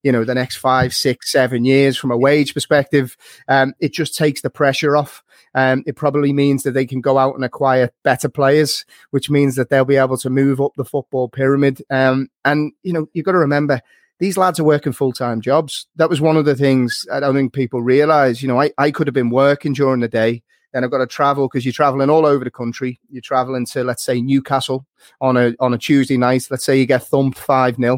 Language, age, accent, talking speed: English, 30-49, British, 230 wpm